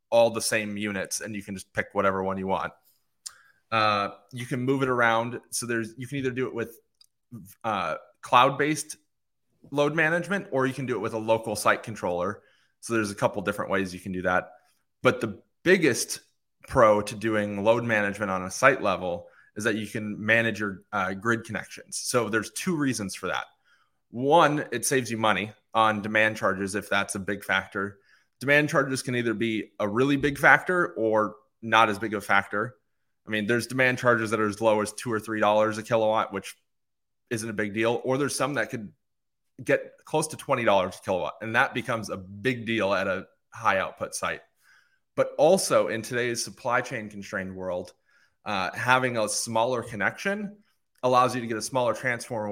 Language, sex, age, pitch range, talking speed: English, male, 20-39, 105-125 Hz, 195 wpm